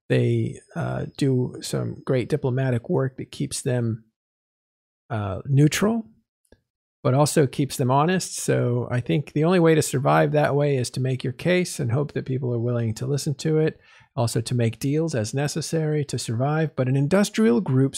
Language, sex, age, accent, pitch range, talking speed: English, male, 50-69, American, 120-150 Hz, 180 wpm